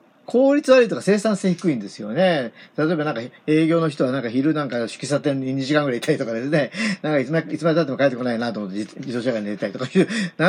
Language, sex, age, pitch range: Japanese, male, 40-59, 130-180 Hz